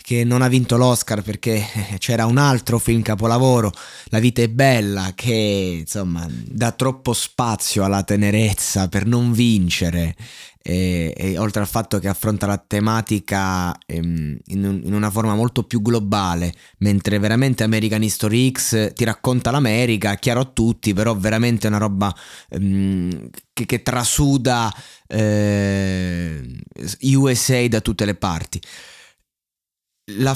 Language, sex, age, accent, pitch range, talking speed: Italian, male, 20-39, native, 100-125 Hz, 140 wpm